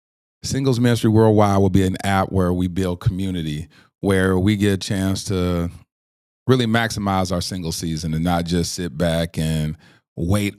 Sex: male